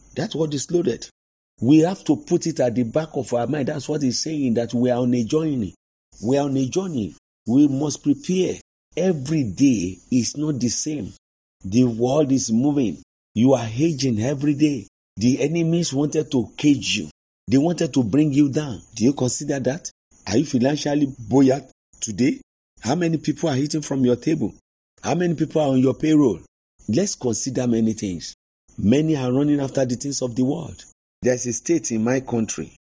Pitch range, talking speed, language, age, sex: 110-150 Hz, 190 wpm, English, 50-69, male